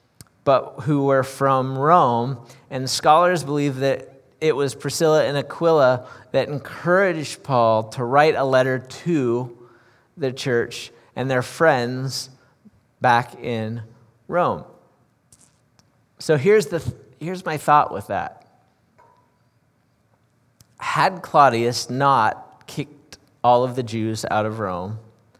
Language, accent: English, American